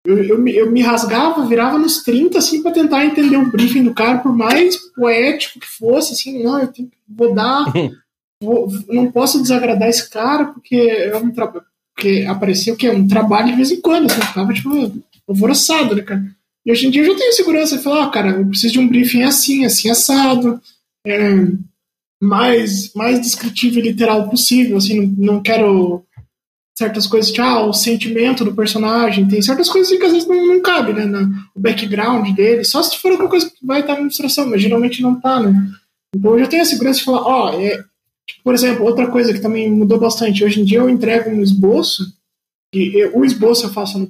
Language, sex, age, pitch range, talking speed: Portuguese, male, 20-39, 210-265 Hz, 205 wpm